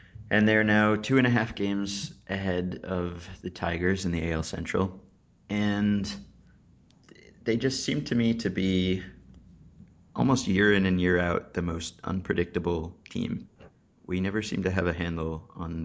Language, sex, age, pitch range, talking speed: English, male, 30-49, 85-105 Hz, 160 wpm